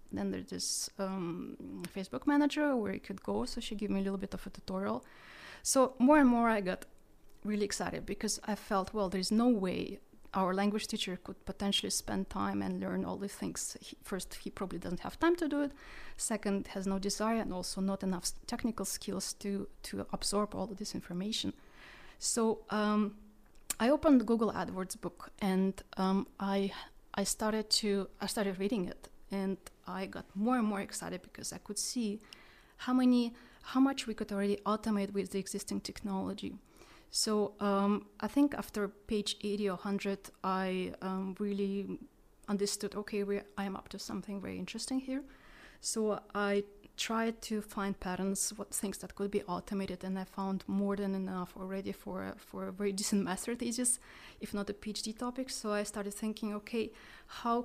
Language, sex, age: German, female, 20-39